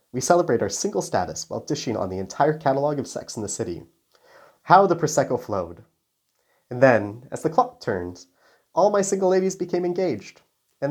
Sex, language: male, English